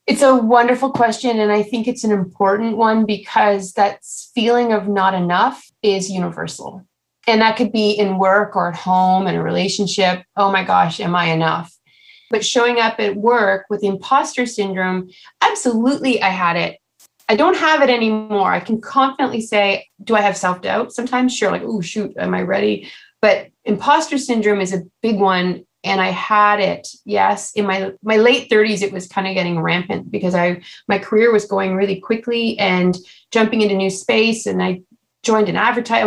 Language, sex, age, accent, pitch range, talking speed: English, female, 30-49, American, 190-235 Hz, 185 wpm